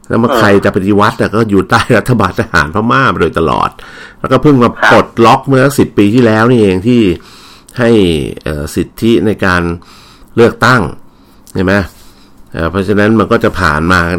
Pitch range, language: 85-105 Hz, Thai